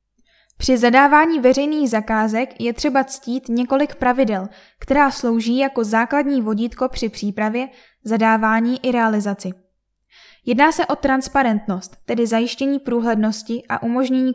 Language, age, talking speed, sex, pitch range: Czech, 10-29, 115 wpm, female, 225-265 Hz